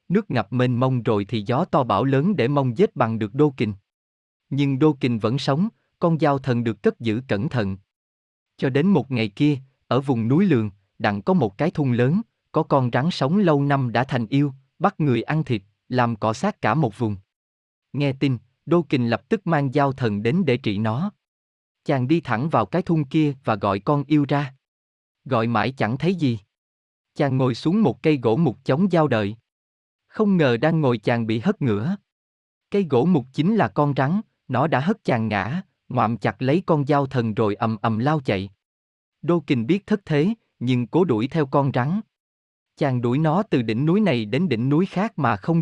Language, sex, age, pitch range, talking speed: Vietnamese, male, 20-39, 115-160 Hz, 210 wpm